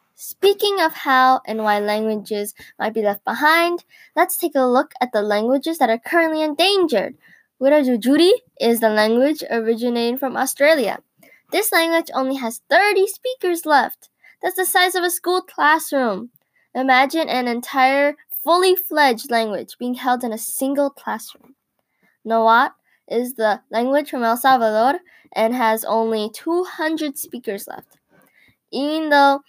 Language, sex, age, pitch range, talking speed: English, female, 10-29, 230-310 Hz, 140 wpm